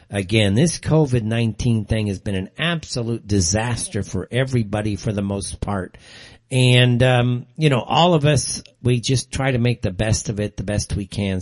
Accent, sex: American, male